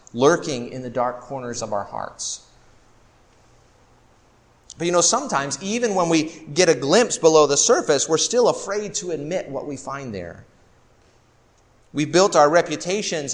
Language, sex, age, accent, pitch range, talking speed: English, male, 30-49, American, 120-165 Hz, 155 wpm